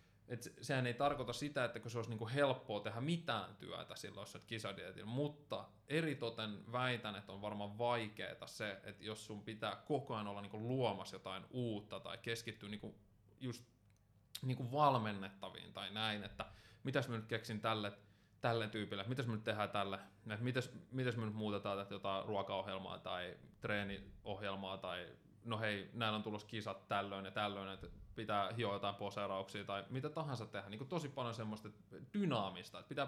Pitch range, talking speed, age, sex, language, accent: 100-125 Hz, 165 wpm, 20-39, male, Finnish, native